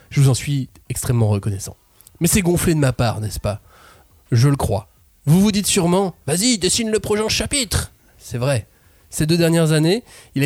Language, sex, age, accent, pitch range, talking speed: French, male, 20-39, French, 120-155 Hz, 190 wpm